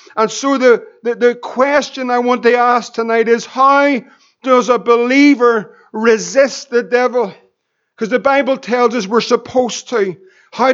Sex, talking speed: male, 155 wpm